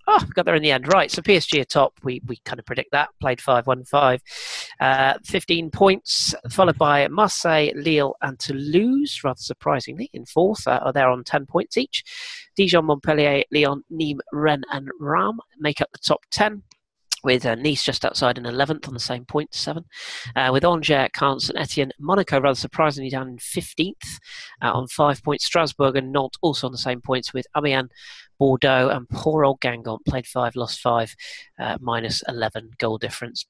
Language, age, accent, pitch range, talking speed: English, 40-59, British, 130-165 Hz, 190 wpm